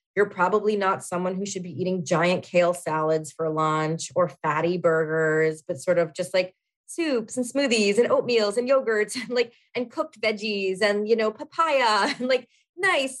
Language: English